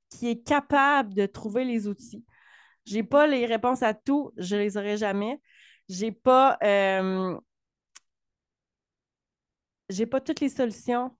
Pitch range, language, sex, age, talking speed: 210-265 Hz, French, female, 30-49, 145 wpm